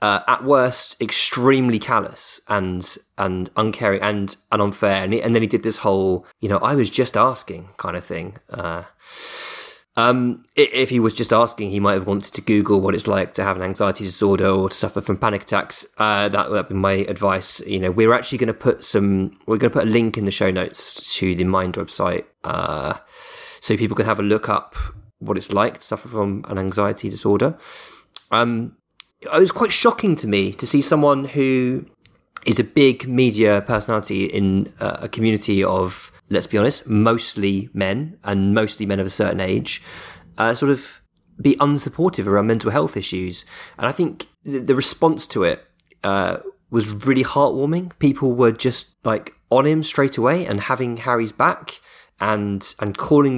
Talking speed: 190 wpm